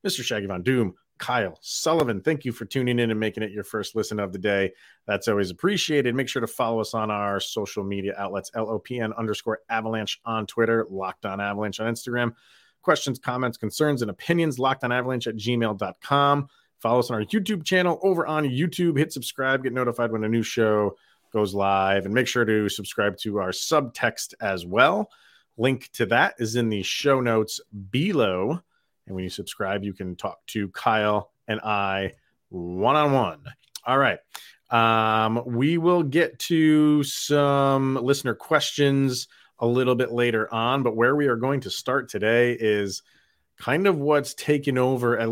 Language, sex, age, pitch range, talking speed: English, male, 30-49, 105-135 Hz, 175 wpm